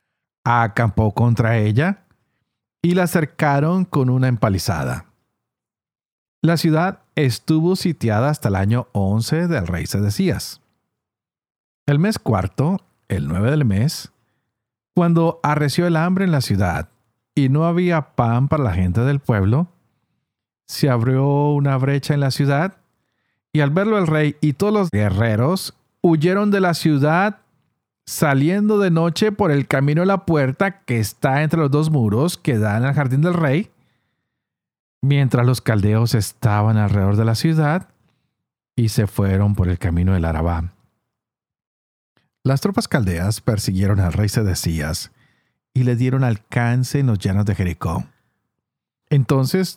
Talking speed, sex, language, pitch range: 140 wpm, male, Spanish, 110-160 Hz